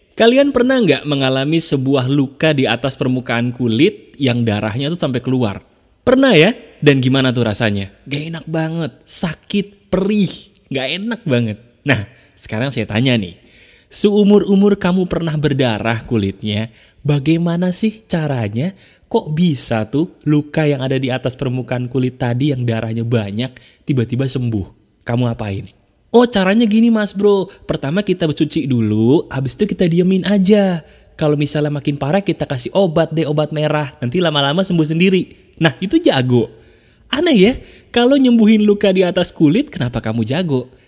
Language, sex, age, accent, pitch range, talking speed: Indonesian, male, 20-39, native, 125-185 Hz, 150 wpm